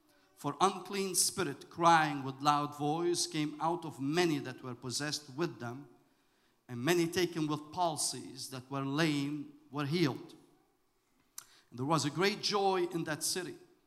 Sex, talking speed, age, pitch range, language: male, 145 wpm, 50-69, 145-175 Hz, English